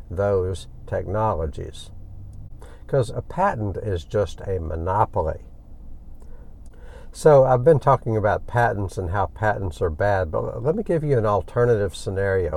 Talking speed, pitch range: 135 wpm, 90-115 Hz